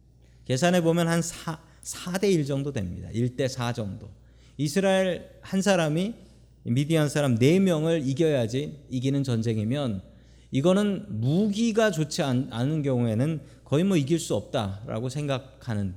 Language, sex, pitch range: Korean, male, 120-165 Hz